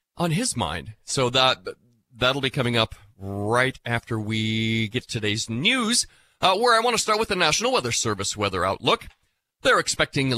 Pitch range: 115-155 Hz